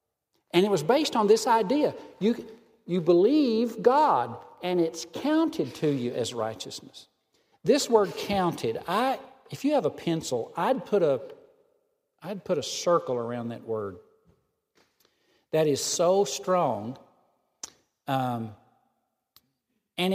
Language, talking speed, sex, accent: English, 130 wpm, male, American